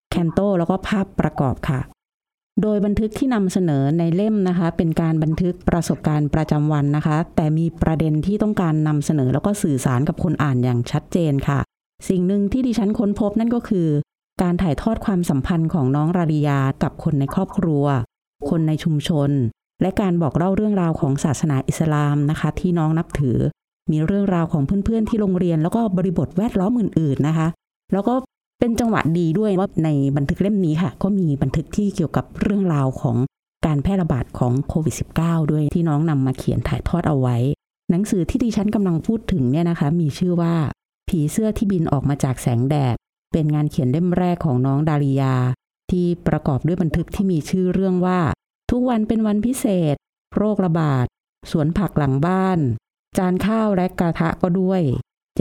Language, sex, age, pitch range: Thai, female, 30-49, 150-195 Hz